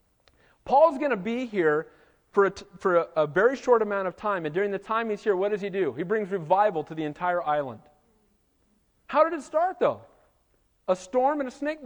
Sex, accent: male, American